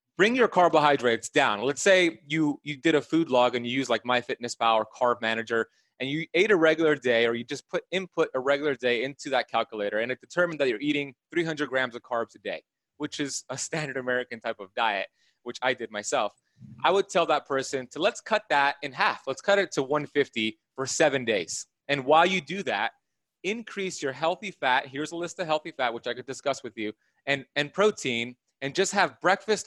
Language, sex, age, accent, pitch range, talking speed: English, male, 30-49, American, 130-175 Hz, 220 wpm